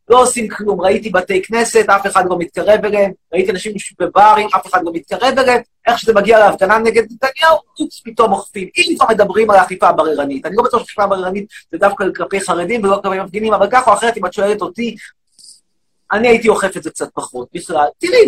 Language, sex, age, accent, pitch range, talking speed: Hebrew, male, 30-49, native, 190-260 Hz, 205 wpm